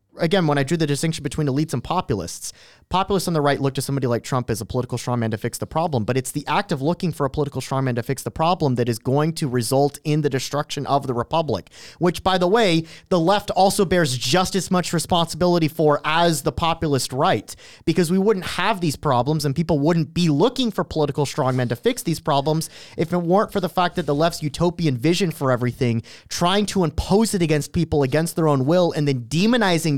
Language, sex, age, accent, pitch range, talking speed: English, male, 30-49, American, 135-185 Hz, 225 wpm